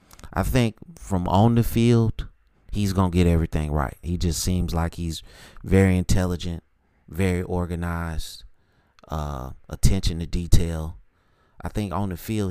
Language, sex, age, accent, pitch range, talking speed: English, male, 30-49, American, 80-100 Hz, 140 wpm